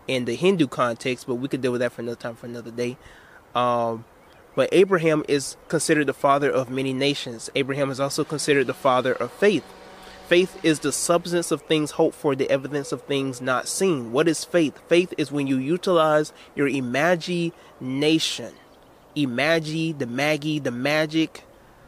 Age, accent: 20-39, American